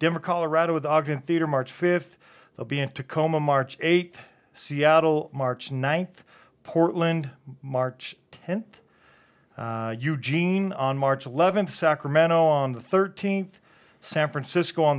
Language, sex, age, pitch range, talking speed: English, male, 40-59, 135-165 Hz, 125 wpm